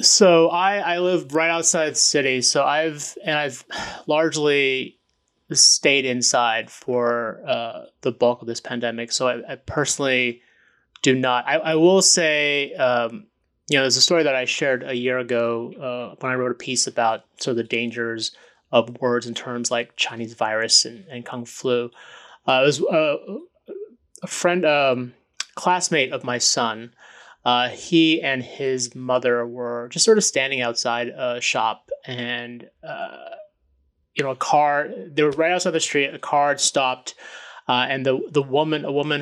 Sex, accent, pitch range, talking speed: male, American, 120-155 Hz, 175 wpm